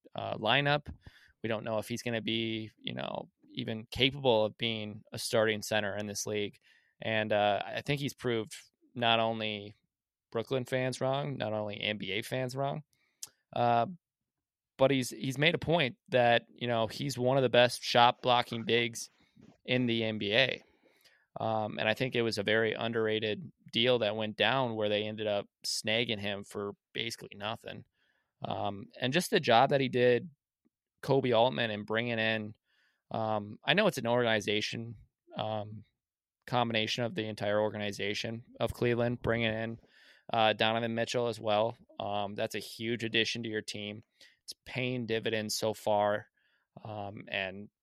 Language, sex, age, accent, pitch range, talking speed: English, male, 20-39, American, 110-125 Hz, 165 wpm